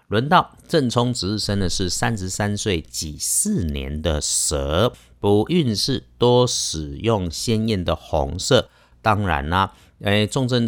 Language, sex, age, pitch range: Chinese, male, 50-69, 90-115 Hz